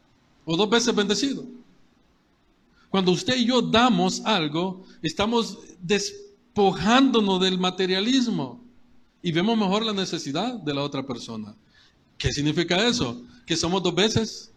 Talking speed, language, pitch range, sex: 125 wpm, Spanish, 160-225 Hz, male